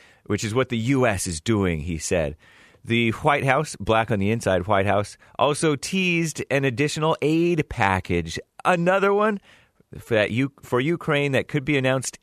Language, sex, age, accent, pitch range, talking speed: English, male, 30-49, American, 105-140 Hz, 160 wpm